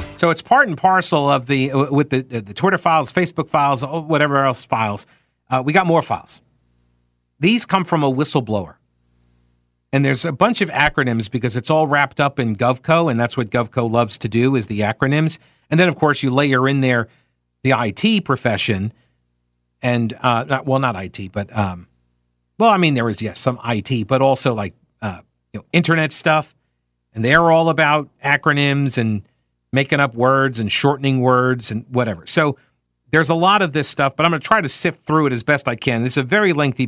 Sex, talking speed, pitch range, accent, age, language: male, 200 wpm, 105-150 Hz, American, 50-69, English